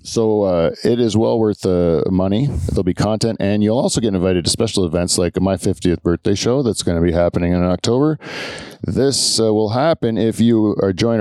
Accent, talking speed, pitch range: American, 205 wpm, 90-120 Hz